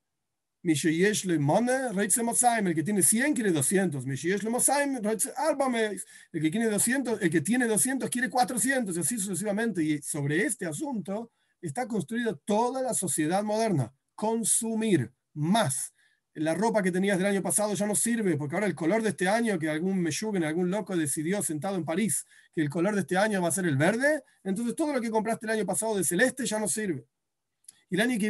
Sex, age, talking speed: male, 40-59, 180 wpm